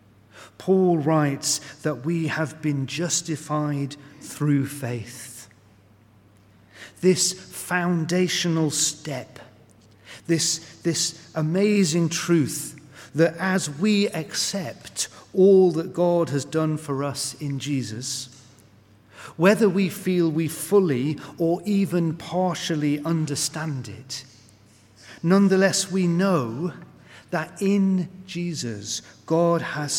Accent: British